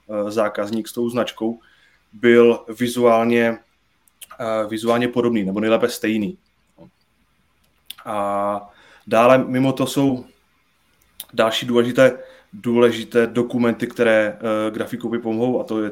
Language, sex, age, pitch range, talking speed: Czech, male, 20-39, 110-120 Hz, 100 wpm